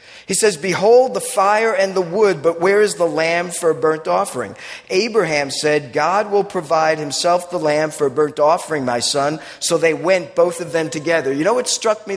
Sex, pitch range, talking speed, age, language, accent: male, 155-205 Hz, 210 wpm, 50-69, English, American